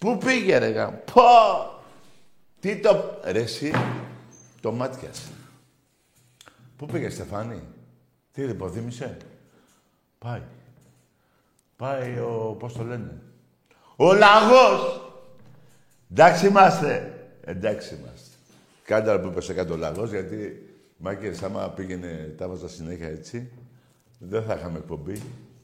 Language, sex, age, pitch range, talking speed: Greek, male, 60-79, 115-145 Hz, 110 wpm